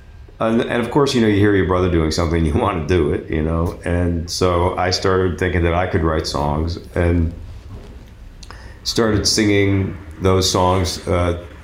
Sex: male